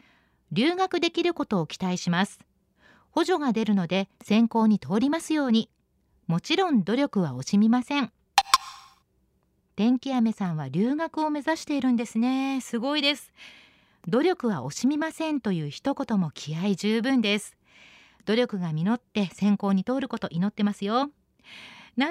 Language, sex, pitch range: Japanese, female, 200-285 Hz